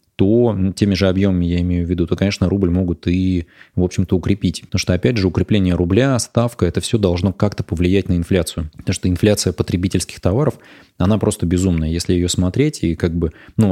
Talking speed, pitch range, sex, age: 195 wpm, 90-100 Hz, male, 20-39